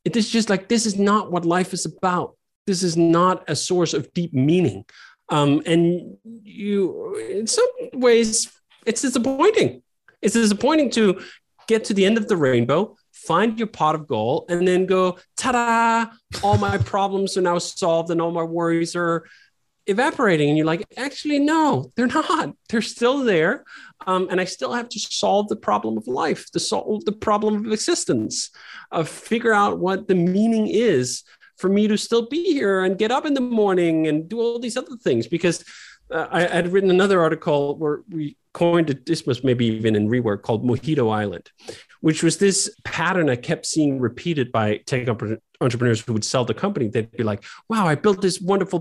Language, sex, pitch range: English, male, 140-205 Hz